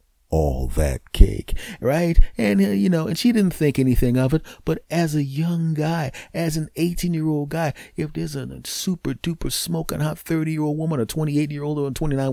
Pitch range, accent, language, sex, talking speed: 95-155 Hz, American, English, male, 215 wpm